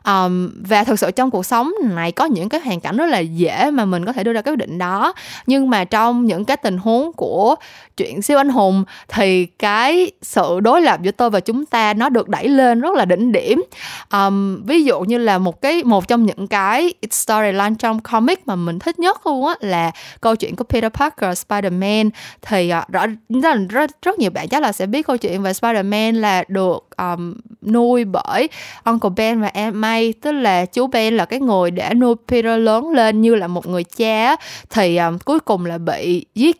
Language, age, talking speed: Vietnamese, 20-39, 210 wpm